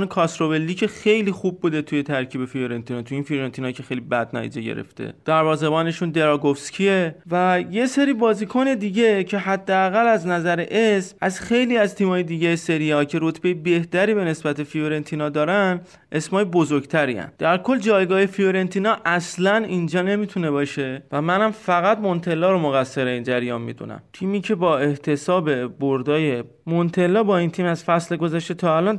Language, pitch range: Persian, 145-200 Hz